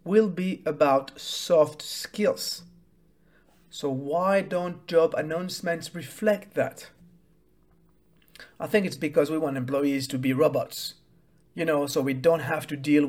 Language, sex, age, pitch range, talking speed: English, male, 50-69, 155-185 Hz, 140 wpm